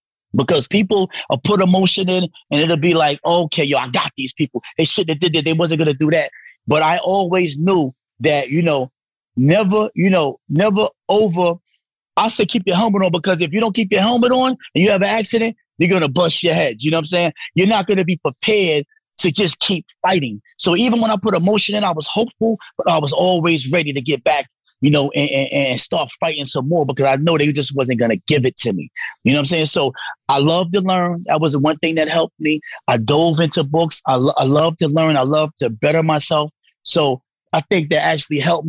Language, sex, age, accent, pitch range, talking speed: English, male, 30-49, American, 145-185 Hz, 240 wpm